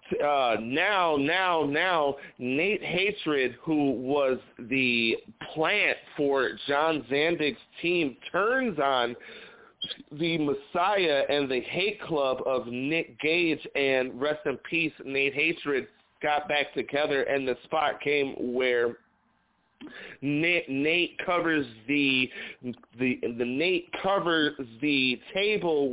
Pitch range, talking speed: 130-165 Hz, 115 wpm